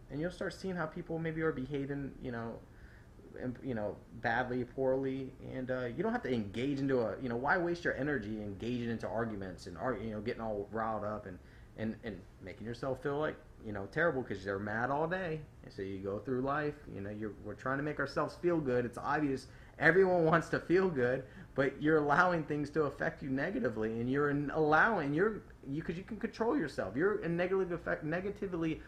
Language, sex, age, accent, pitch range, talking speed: English, male, 30-49, American, 110-155 Hz, 205 wpm